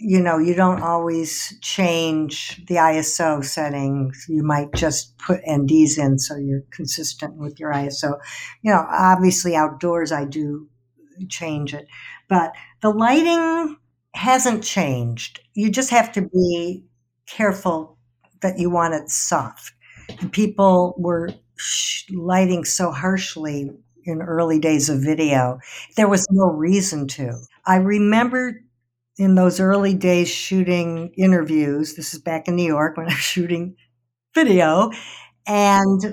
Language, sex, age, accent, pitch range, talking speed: English, female, 60-79, American, 150-195 Hz, 135 wpm